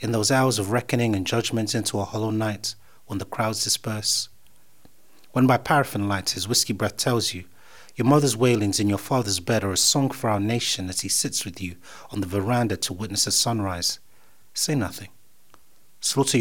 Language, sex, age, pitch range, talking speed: English, male, 30-49, 100-130 Hz, 190 wpm